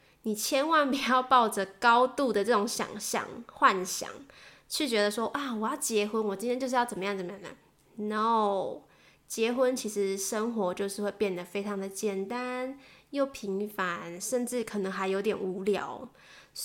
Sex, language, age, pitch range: female, Chinese, 20-39, 205-260 Hz